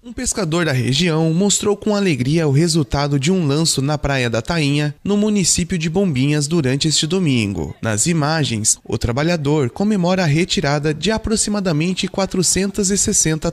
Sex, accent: male, Brazilian